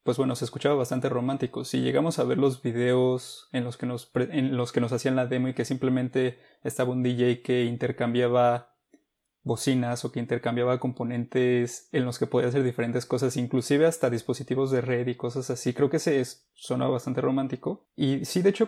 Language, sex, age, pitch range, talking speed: Spanish, male, 20-39, 125-135 Hz, 200 wpm